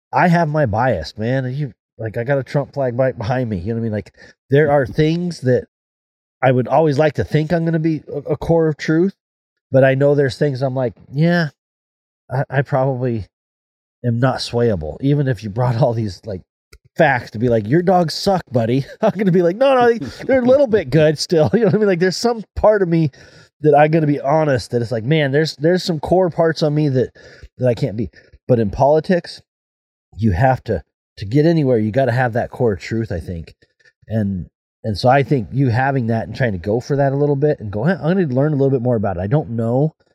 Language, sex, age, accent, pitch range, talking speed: English, male, 30-49, American, 100-145 Hz, 245 wpm